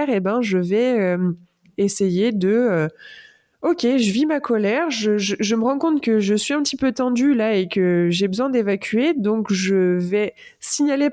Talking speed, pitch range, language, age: 195 wpm, 200-250 Hz, French, 20-39